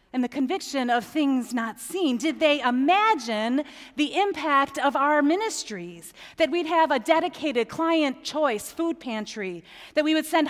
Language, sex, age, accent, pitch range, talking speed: English, female, 40-59, American, 210-285 Hz, 160 wpm